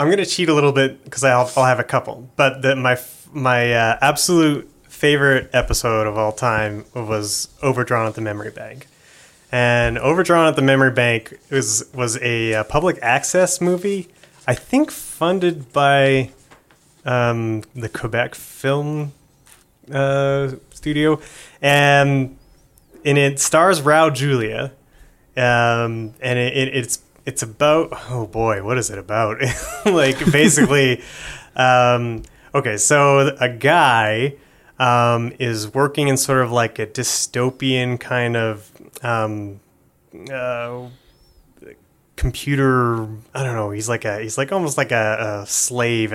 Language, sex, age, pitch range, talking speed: English, male, 30-49, 115-140 Hz, 135 wpm